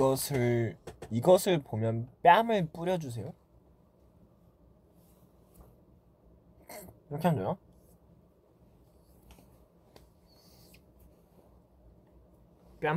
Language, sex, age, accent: Korean, male, 20-39, native